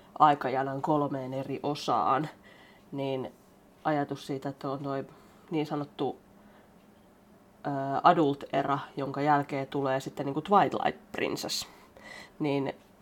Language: Finnish